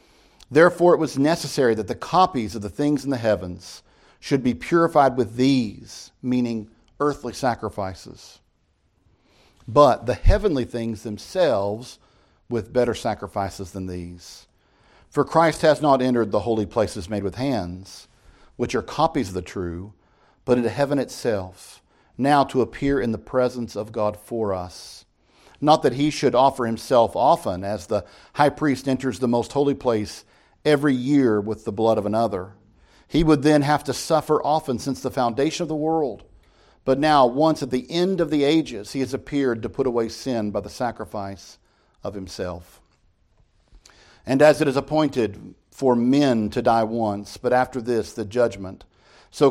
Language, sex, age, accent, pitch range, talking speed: English, male, 50-69, American, 100-140 Hz, 165 wpm